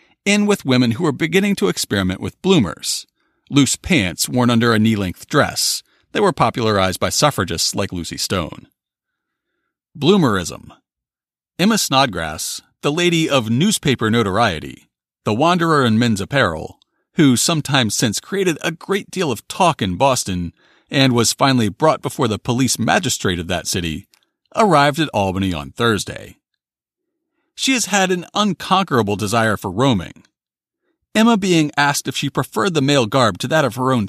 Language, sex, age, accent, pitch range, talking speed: English, male, 40-59, American, 105-160 Hz, 155 wpm